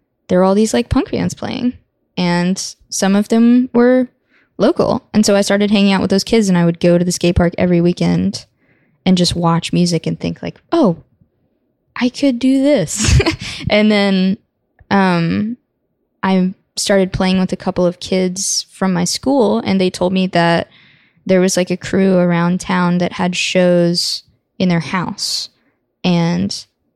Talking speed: 175 wpm